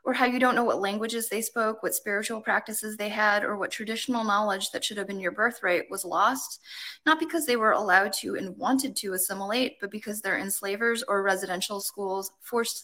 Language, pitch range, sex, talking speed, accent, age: English, 195-240 Hz, female, 205 wpm, American, 20-39